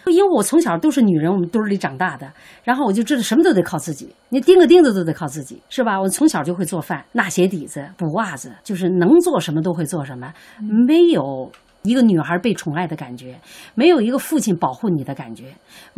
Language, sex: Chinese, female